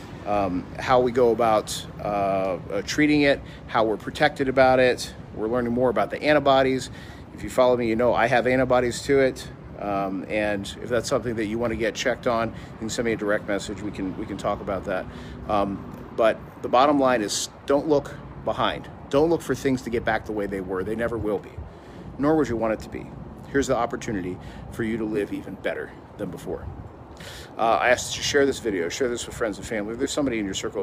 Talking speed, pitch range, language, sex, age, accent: 230 wpm, 105-130 Hz, English, male, 40-59, American